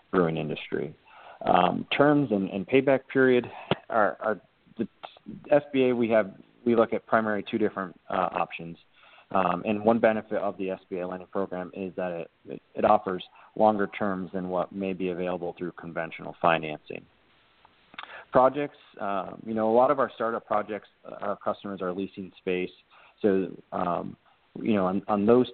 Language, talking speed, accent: English, 160 wpm, American